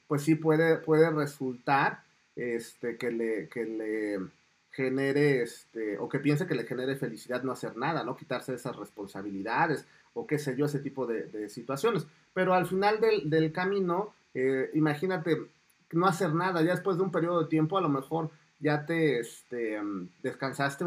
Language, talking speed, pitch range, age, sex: Spanish, 175 wpm, 125-165 Hz, 30-49, male